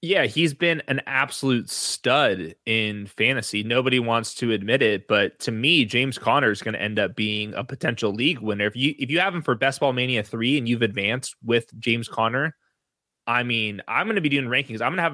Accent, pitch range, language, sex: American, 110-135 Hz, English, male